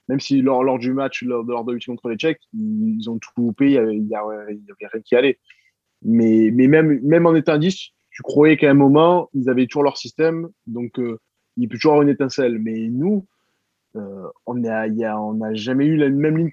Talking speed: 215 wpm